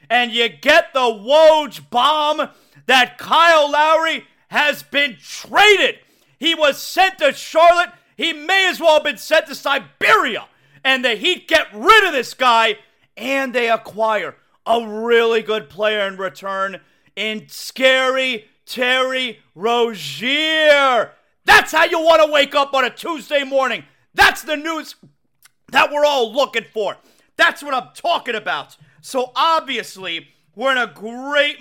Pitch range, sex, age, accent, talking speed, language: 205-290 Hz, male, 40-59, American, 145 wpm, English